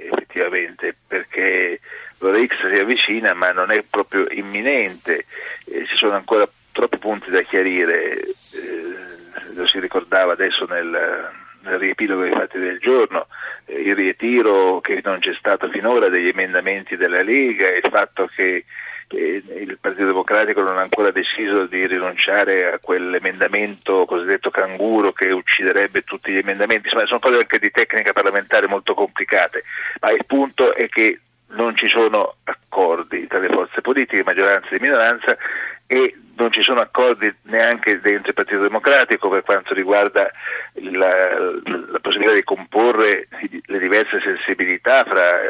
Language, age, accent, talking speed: Italian, 40-59, native, 145 wpm